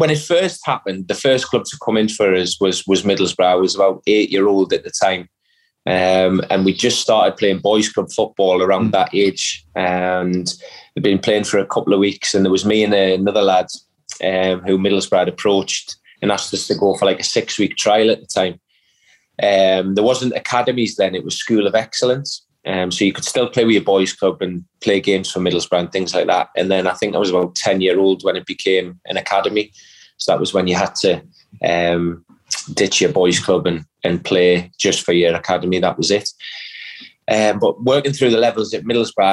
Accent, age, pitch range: British, 20-39, 95-105 Hz